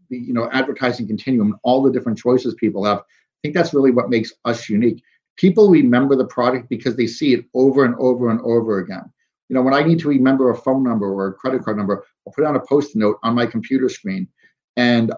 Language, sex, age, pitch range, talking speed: English, male, 50-69, 110-130 Hz, 235 wpm